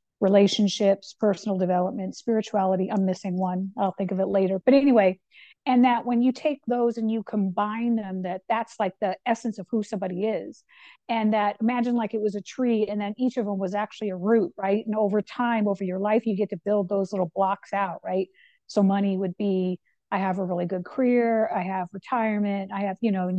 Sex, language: female, English